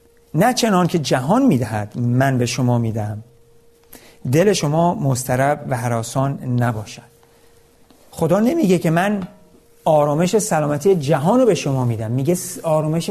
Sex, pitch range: male, 125-160 Hz